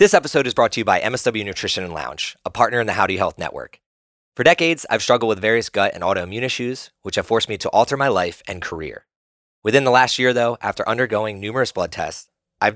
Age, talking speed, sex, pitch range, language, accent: 20-39, 230 wpm, male, 95-125 Hz, English, American